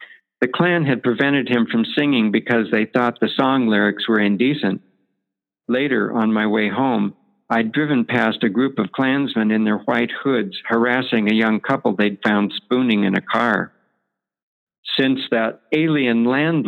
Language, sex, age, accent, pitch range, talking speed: English, male, 60-79, American, 105-135 Hz, 160 wpm